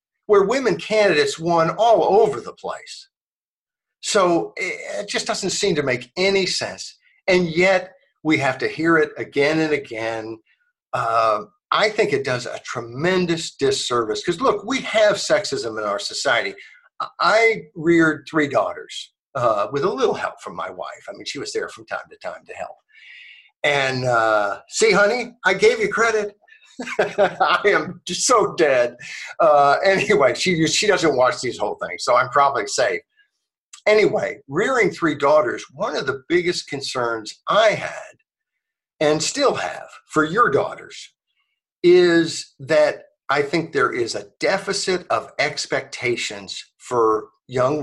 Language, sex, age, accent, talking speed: English, male, 60-79, American, 150 wpm